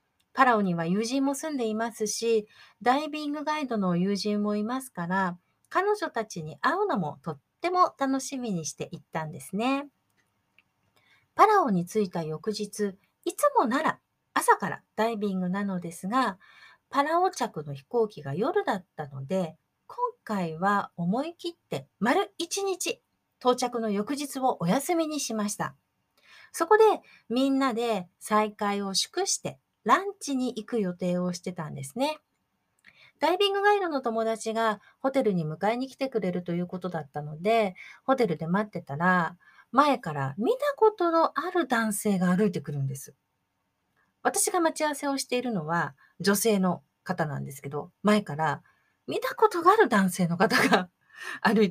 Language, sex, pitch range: Japanese, female, 180-290 Hz